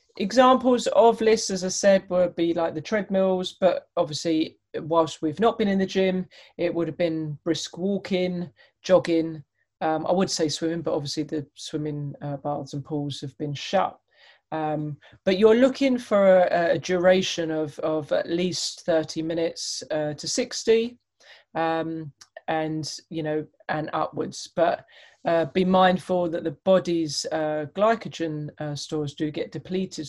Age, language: 30-49, English